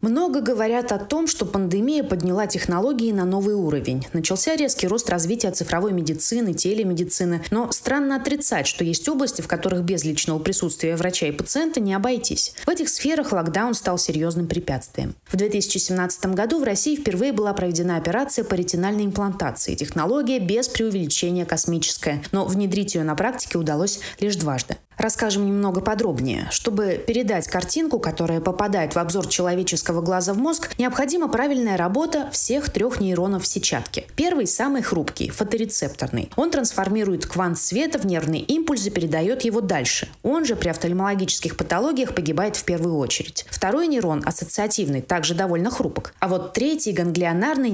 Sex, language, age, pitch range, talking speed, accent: female, Russian, 20-39, 175-235 Hz, 150 wpm, native